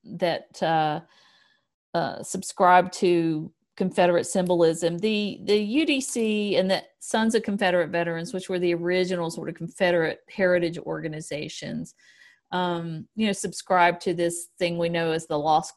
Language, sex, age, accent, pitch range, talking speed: English, female, 50-69, American, 170-205 Hz, 140 wpm